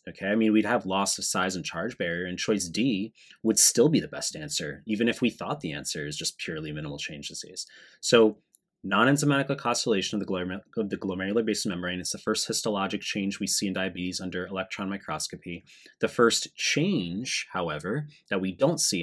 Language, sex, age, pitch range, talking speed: English, male, 30-49, 90-115 Hz, 190 wpm